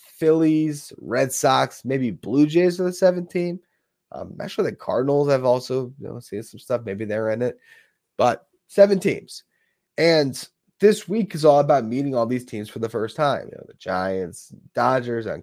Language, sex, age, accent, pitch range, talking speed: English, male, 20-39, American, 120-175 Hz, 185 wpm